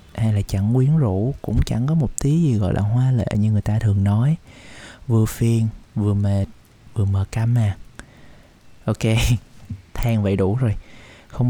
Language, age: Vietnamese, 20-39